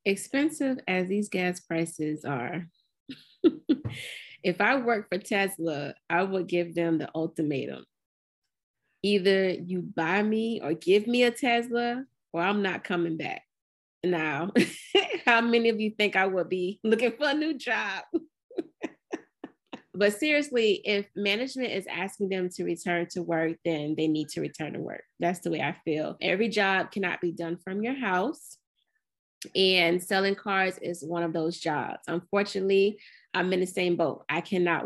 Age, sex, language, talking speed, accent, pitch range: 20-39, female, English, 160 wpm, American, 170-210 Hz